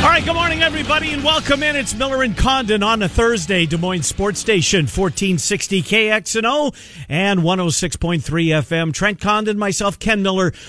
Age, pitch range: 50-69, 140-195 Hz